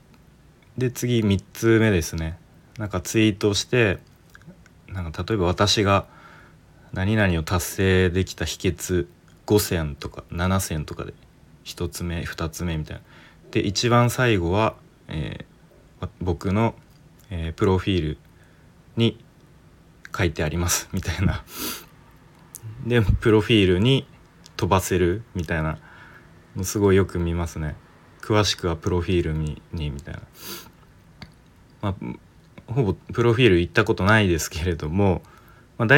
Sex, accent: male, native